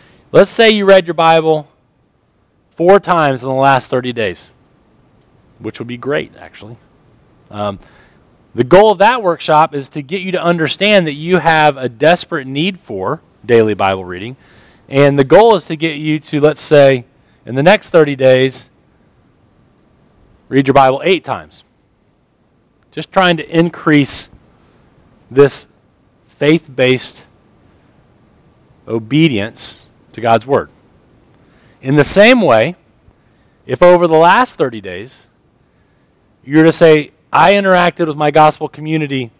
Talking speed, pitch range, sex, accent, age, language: 135 wpm, 125-165 Hz, male, American, 40-59, English